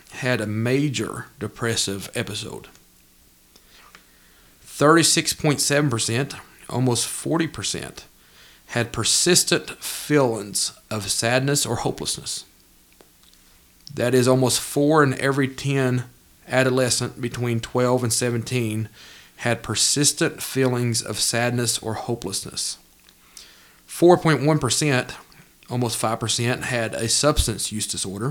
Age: 40-59